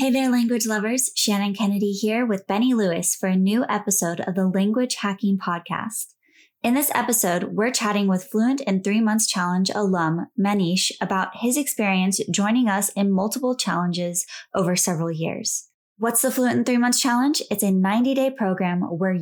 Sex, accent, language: female, American, English